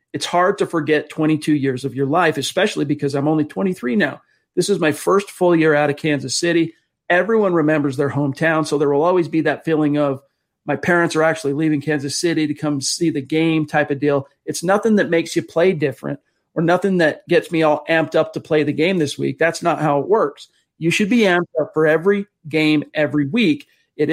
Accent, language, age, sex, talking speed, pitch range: American, English, 40-59, male, 220 wpm, 145-170 Hz